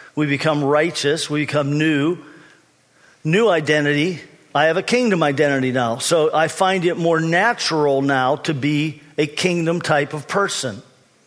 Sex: male